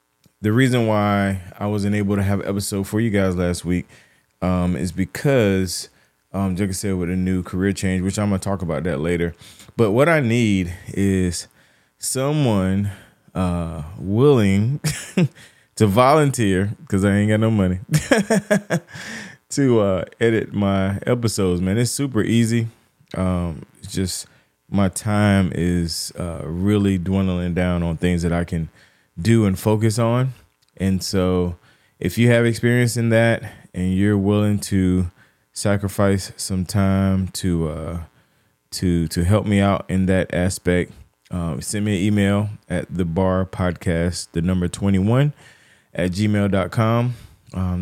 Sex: male